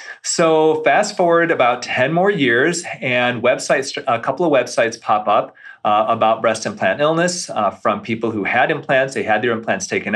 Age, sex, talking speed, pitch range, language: 40-59, male, 185 wpm, 115-185 Hz, English